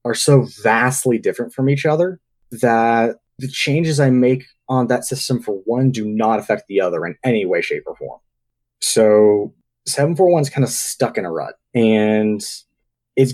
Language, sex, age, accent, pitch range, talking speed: English, male, 20-39, American, 110-135 Hz, 185 wpm